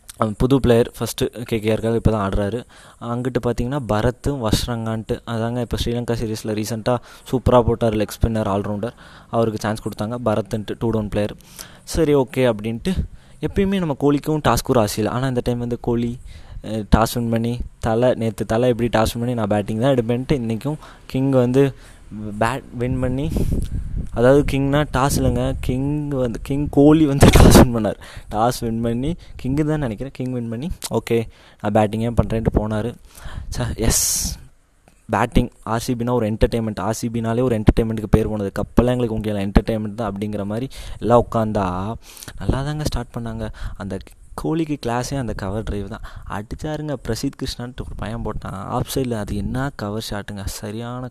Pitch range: 110-125 Hz